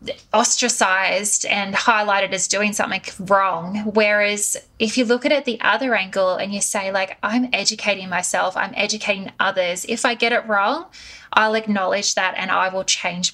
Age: 10-29